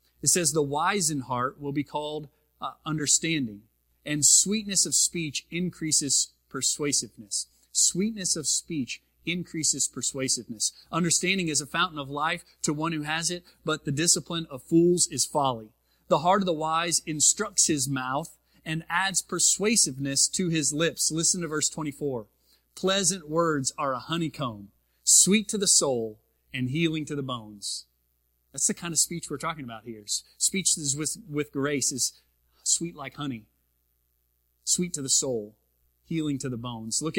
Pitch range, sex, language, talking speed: 125-165 Hz, male, English, 160 wpm